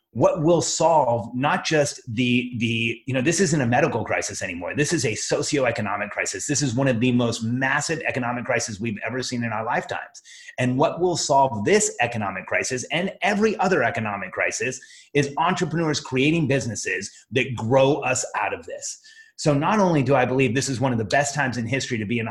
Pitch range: 120-155 Hz